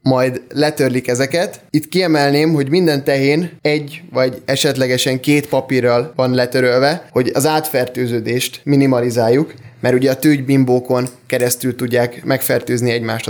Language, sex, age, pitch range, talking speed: Hungarian, male, 10-29, 130-150 Hz, 120 wpm